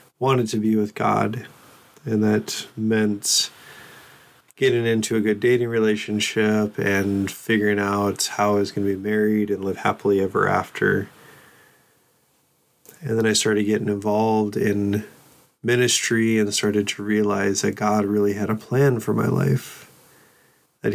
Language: English